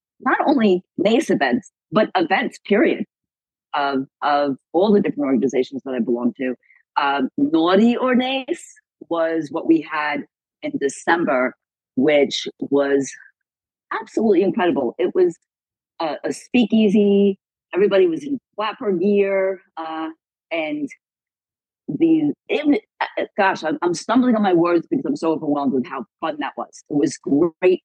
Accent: American